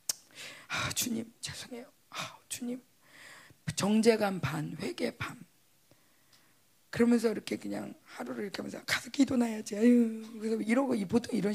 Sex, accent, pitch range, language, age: female, native, 170-240 Hz, Korean, 40-59